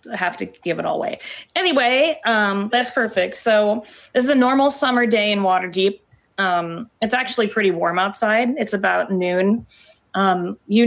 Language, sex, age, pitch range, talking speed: English, female, 20-39, 180-210 Hz, 165 wpm